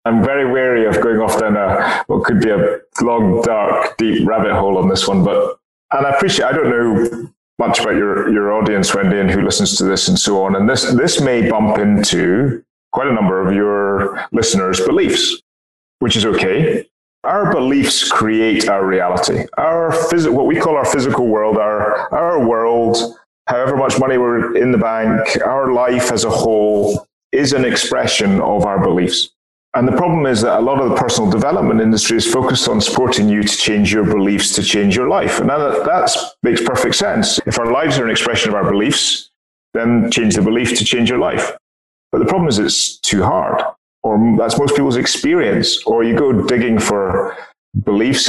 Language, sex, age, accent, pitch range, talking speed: English, male, 30-49, British, 105-130 Hz, 195 wpm